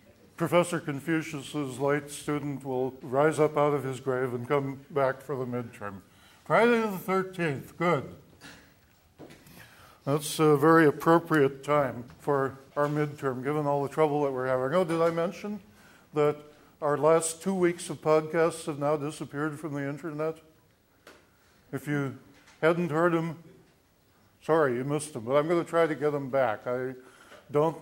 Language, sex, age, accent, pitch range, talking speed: English, male, 60-79, American, 125-155 Hz, 155 wpm